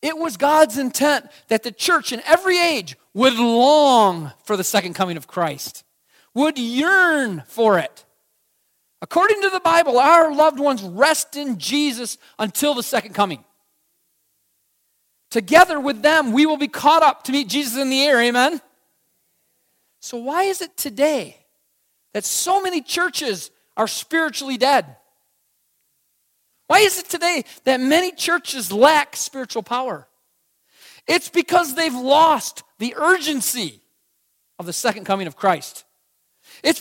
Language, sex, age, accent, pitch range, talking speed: English, male, 40-59, American, 220-320 Hz, 140 wpm